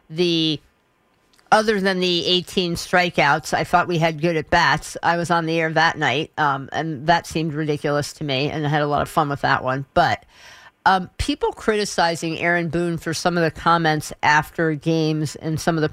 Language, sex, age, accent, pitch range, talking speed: English, female, 50-69, American, 155-180 Hz, 200 wpm